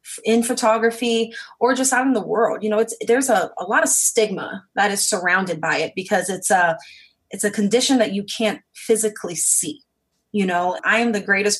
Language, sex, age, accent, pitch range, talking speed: English, female, 30-49, American, 200-255 Hz, 200 wpm